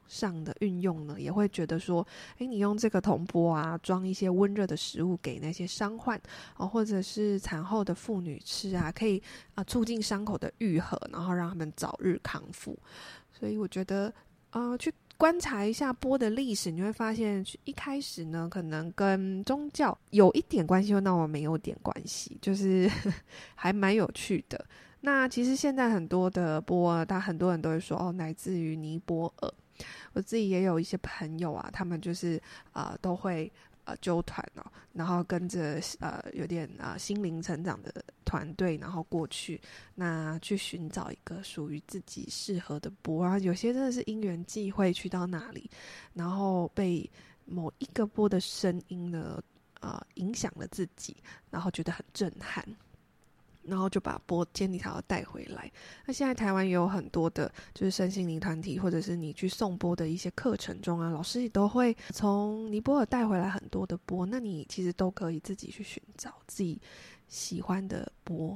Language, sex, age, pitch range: Chinese, female, 20-39, 170-205 Hz